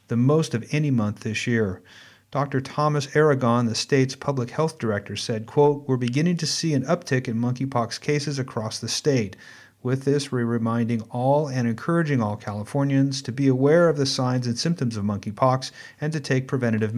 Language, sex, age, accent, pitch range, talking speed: English, male, 40-59, American, 115-140 Hz, 180 wpm